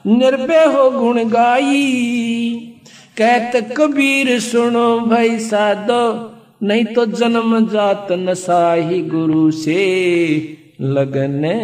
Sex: male